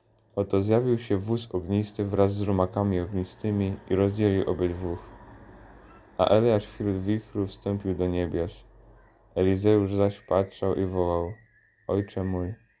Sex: male